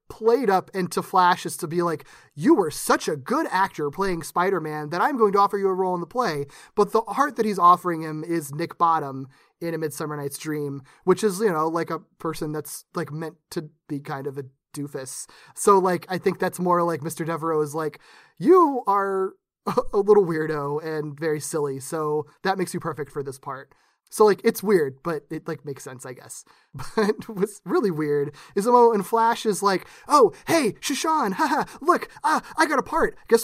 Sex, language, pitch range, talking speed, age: male, English, 155-210 Hz, 210 wpm, 30-49